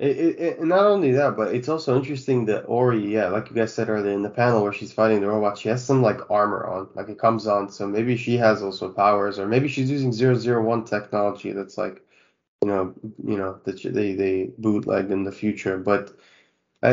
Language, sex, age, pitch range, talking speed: English, male, 20-39, 100-120 Hz, 220 wpm